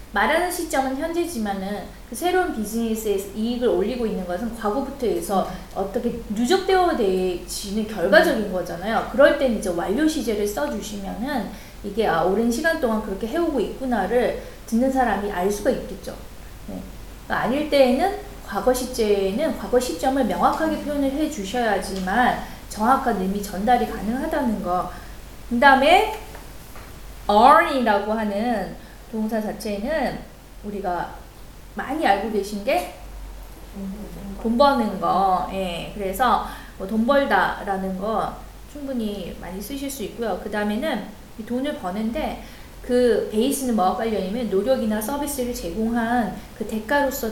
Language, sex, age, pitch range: Korean, female, 20-39, 200-255 Hz